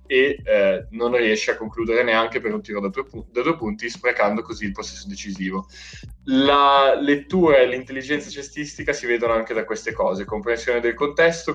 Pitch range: 110-135 Hz